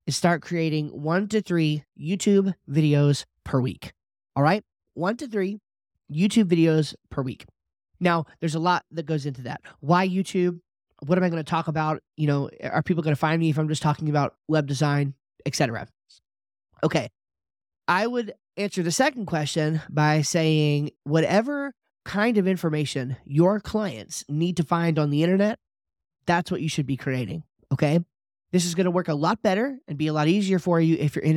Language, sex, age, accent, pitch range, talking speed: English, male, 20-39, American, 150-180 Hz, 185 wpm